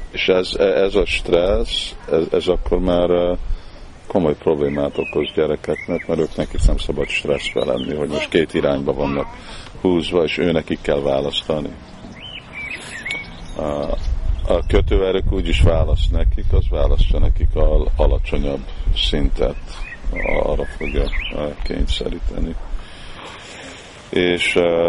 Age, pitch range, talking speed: 50-69, 75-90 Hz, 110 wpm